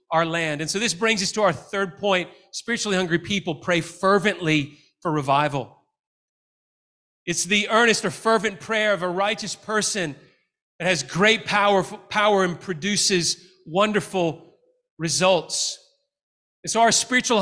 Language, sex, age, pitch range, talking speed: English, male, 30-49, 180-220 Hz, 140 wpm